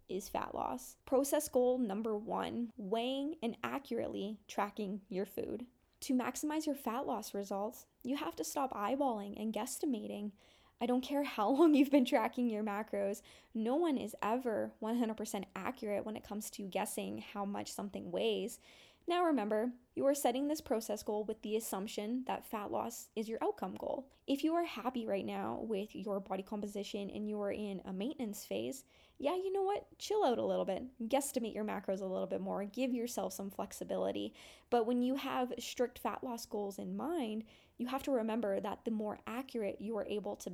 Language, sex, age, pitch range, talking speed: English, female, 10-29, 205-265 Hz, 190 wpm